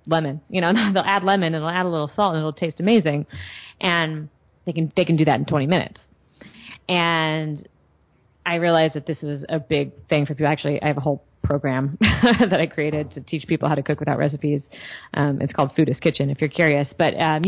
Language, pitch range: English, 150-195 Hz